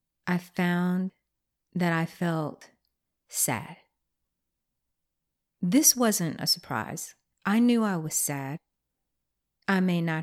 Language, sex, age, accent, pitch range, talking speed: English, female, 50-69, American, 160-215 Hz, 105 wpm